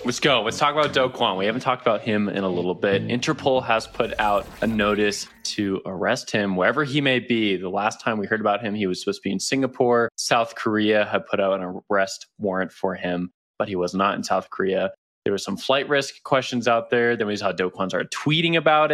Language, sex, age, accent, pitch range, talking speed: English, male, 20-39, American, 95-120 Hz, 240 wpm